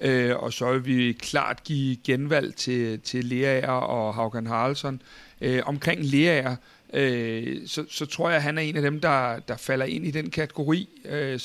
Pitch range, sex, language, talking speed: 135-160 Hz, male, Danish, 190 wpm